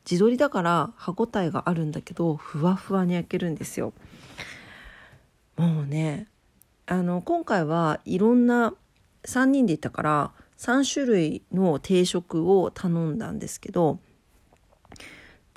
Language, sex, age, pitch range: Japanese, female, 40-59, 165-230 Hz